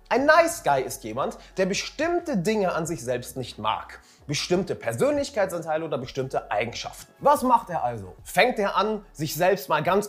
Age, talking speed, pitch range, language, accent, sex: 30-49, 175 wpm, 150-230 Hz, German, German, male